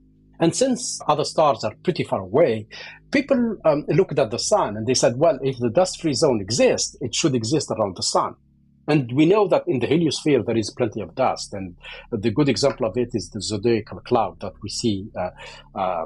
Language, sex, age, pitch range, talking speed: English, male, 50-69, 105-160 Hz, 205 wpm